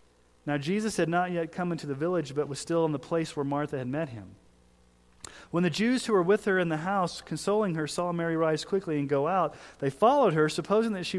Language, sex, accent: English, male, American